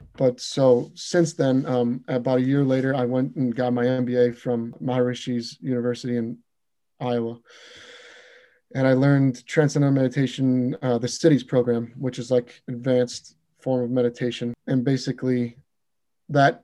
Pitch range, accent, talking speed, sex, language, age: 120-145 Hz, American, 140 wpm, male, English, 30-49